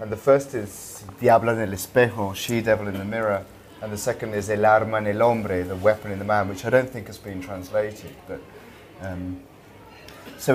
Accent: British